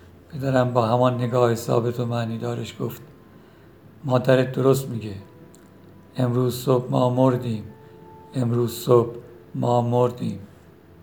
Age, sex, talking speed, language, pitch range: 60-79, male, 110 wpm, Persian, 120-130 Hz